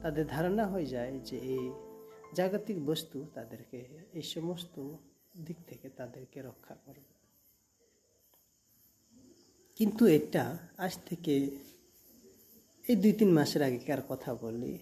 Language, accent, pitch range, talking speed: Hindi, native, 130-185 Hz, 60 wpm